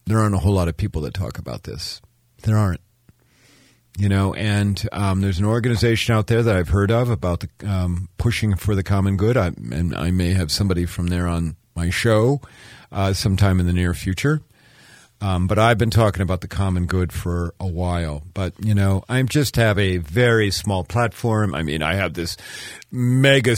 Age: 50-69